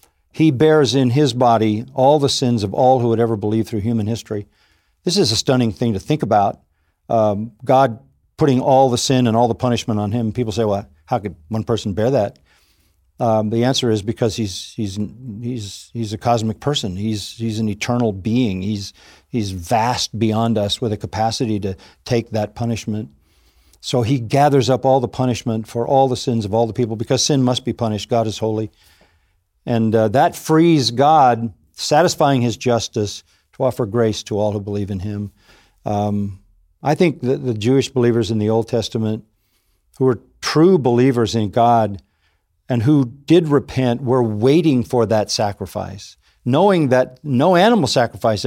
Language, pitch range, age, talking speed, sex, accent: English, 105-130 Hz, 50-69, 180 wpm, male, American